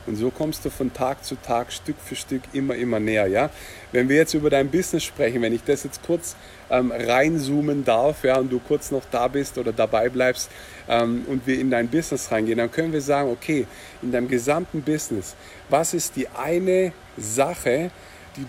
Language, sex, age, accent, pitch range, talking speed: German, male, 50-69, German, 125-155 Hz, 200 wpm